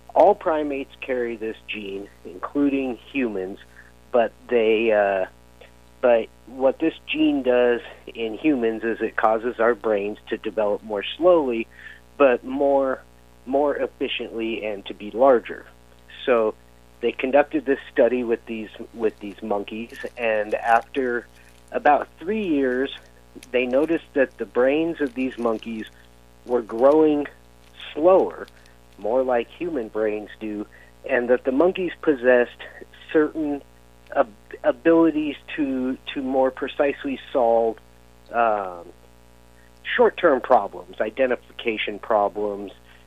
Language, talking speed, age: English, 115 wpm, 50-69